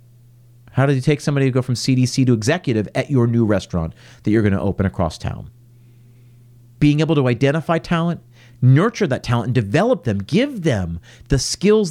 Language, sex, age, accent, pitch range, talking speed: English, male, 40-59, American, 115-140 Hz, 180 wpm